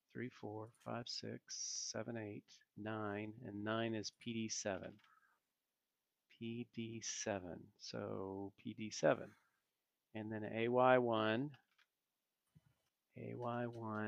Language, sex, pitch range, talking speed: English, male, 105-115 Hz, 75 wpm